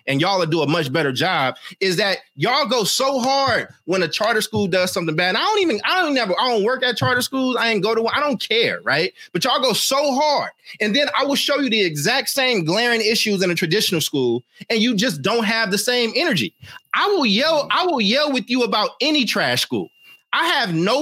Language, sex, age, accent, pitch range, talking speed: English, male, 30-49, American, 175-255 Hz, 235 wpm